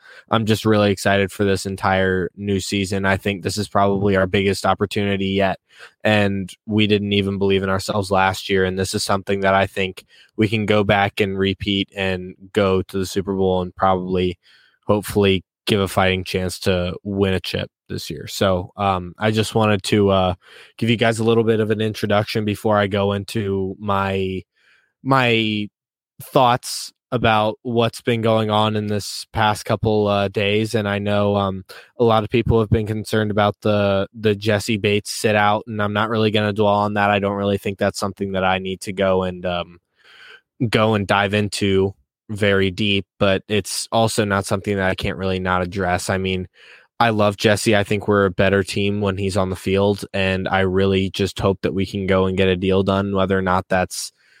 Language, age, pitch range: English, 20-39, 95-105 Hz